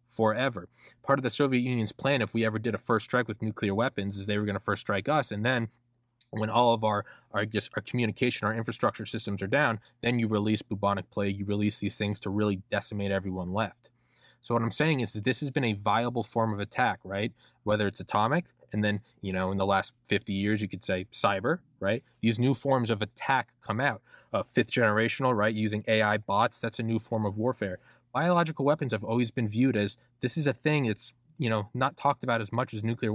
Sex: male